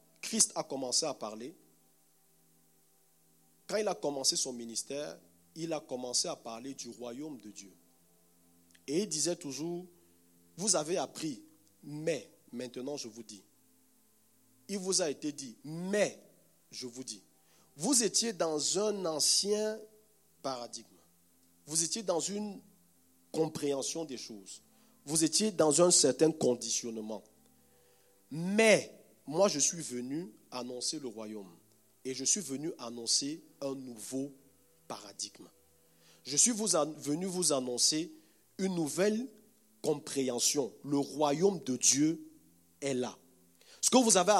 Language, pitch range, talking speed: French, 115-180 Hz, 125 wpm